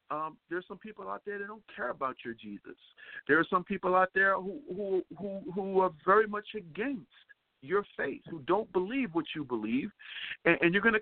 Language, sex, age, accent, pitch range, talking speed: English, male, 50-69, American, 170-210 Hz, 210 wpm